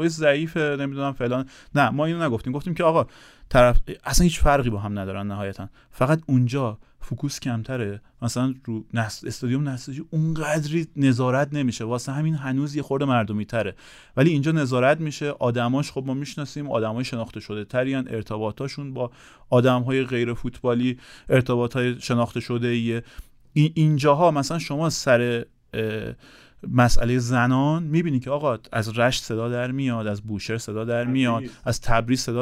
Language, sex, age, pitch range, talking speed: Persian, male, 30-49, 120-145 Hz, 155 wpm